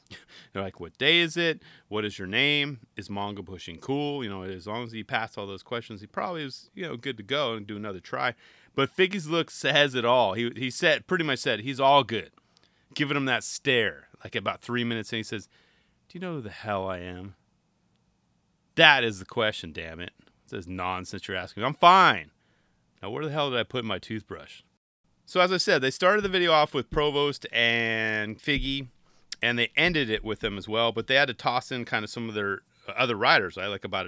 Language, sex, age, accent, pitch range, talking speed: English, male, 30-49, American, 105-150 Hz, 230 wpm